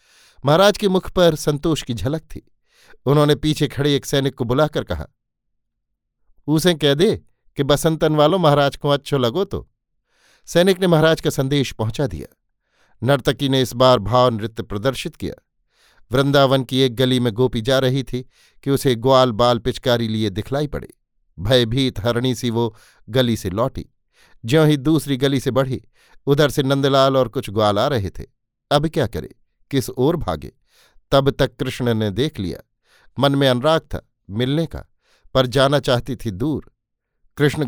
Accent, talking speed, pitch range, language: native, 165 wpm, 120-145 Hz, Hindi